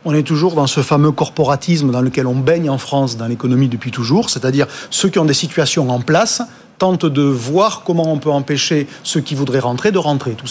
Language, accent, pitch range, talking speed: French, French, 140-175 Hz, 225 wpm